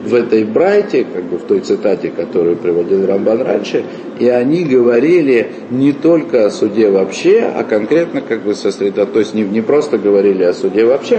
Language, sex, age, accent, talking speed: Russian, male, 50-69, native, 175 wpm